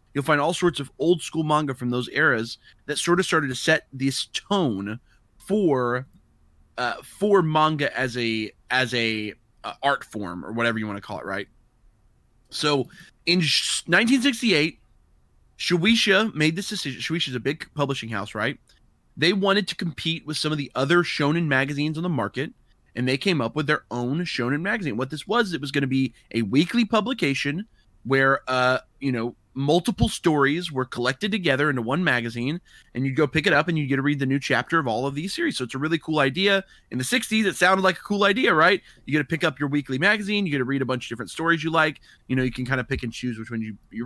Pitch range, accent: 125-175 Hz, American